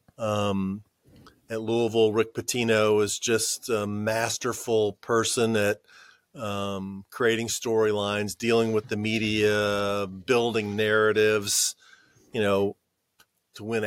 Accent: American